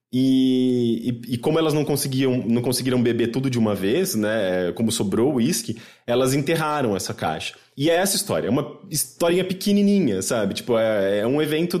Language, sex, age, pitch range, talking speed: English, male, 20-39, 115-165 Hz, 190 wpm